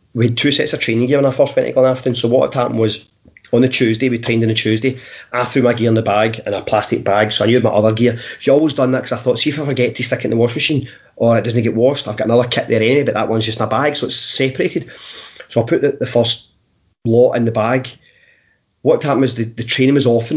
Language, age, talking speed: English, 30-49, 300 wpm